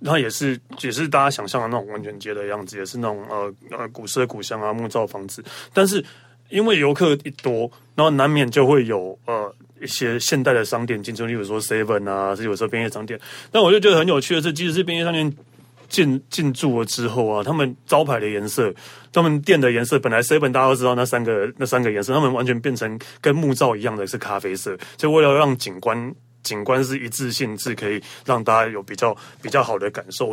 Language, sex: Chinese, male